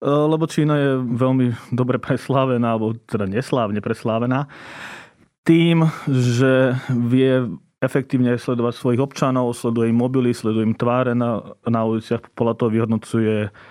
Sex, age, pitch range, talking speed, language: male, 30-49, 115-125 Hz, 125 wpm, Slovak